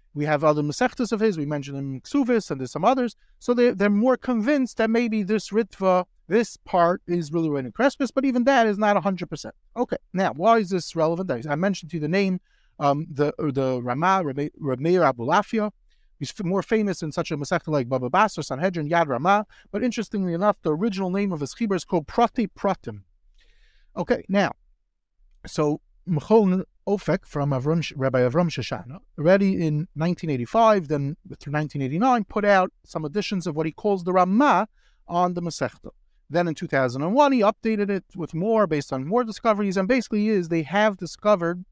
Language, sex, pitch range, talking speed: English, male, 150-215 Hz, 190 wpm